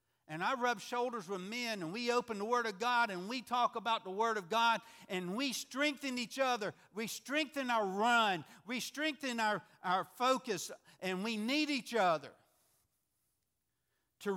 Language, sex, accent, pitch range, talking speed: English, male, American, 155-230 Hz, 170 wpm